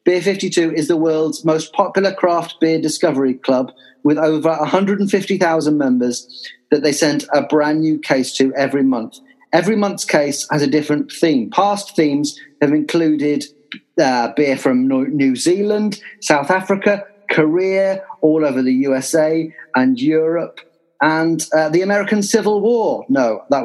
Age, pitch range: 40-59, 130-180 Hz